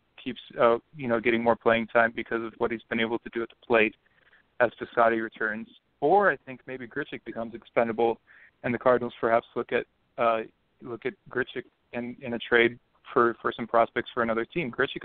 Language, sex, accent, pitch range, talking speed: English, male, American, 115-130 Hz, 205 wpm